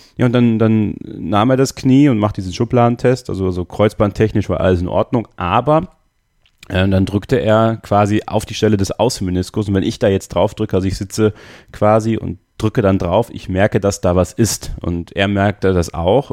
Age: 30-49